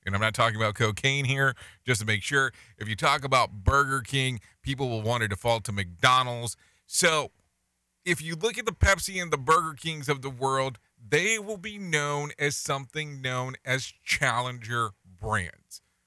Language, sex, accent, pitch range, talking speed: English, male, American, 110-155 Hz, 180 wpm